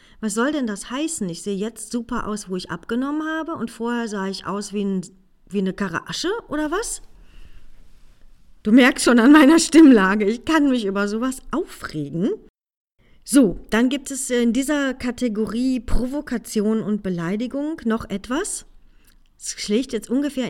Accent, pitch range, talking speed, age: German, 200-260 Hz, 160 wpm, 40-59